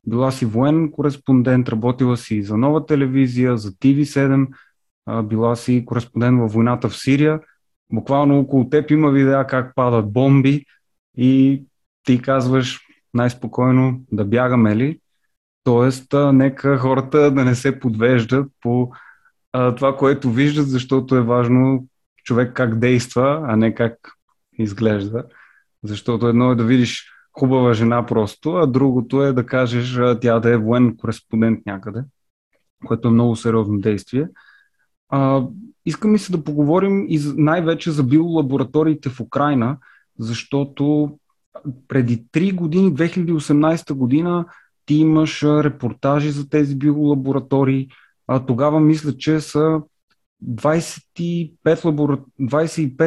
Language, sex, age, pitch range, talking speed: Bulgarian, male, 20-39, 120-150 Hz, 125 wpm